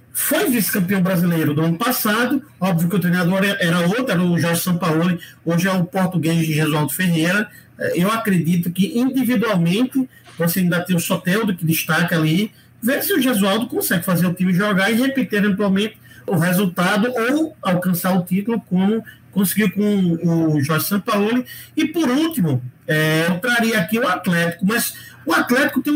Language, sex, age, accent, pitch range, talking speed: Portuguese, male, 50-69, Brazilian, 170-245 Hz, 165 wpm